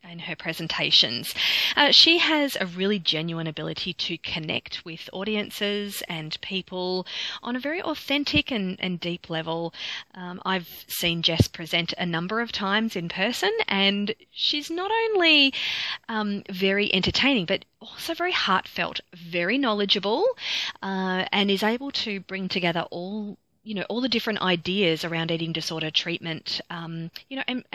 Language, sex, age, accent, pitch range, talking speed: English, female, 30-49, Australian, 170-215 Hz, 150 wpm